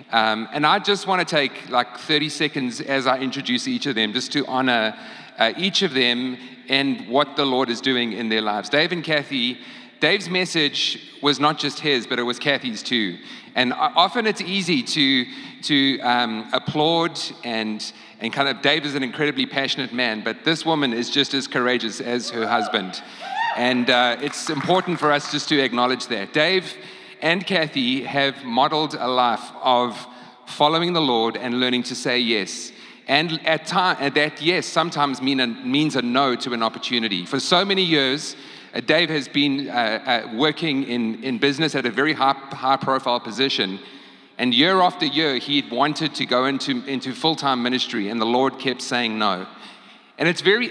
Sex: male